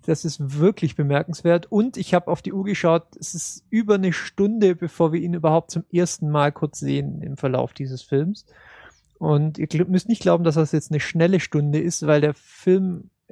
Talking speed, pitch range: 200 wpm, 150-175 Hz